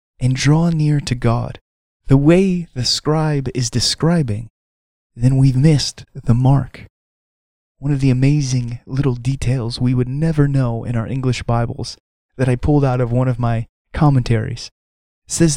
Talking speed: 155 wpm